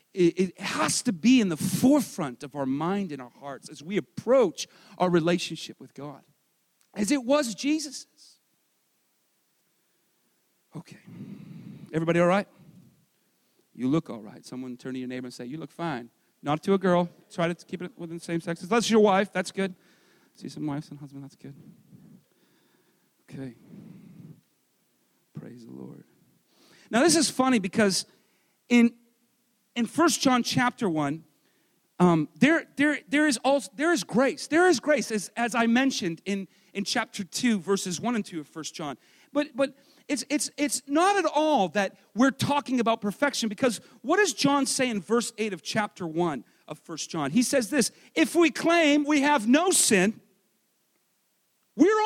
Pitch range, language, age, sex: 175-280 Hz, English, 40-59, male